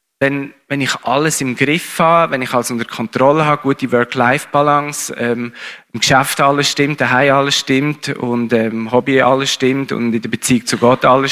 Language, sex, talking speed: German, male, 190 wpm